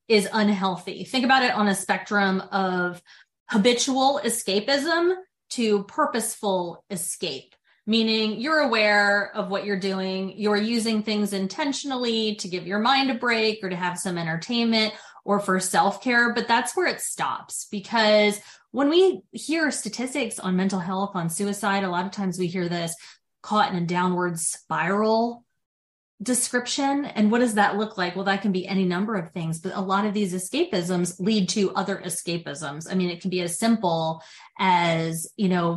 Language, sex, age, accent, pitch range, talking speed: English, female, 20-39, American, 185-220 Hz, 170 wpm